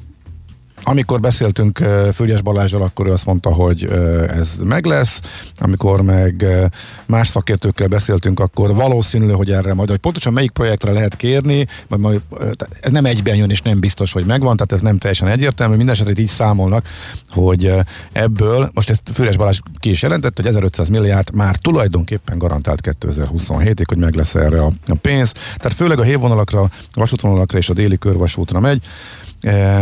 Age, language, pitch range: 50-69, Hungarian, 90-110 Hz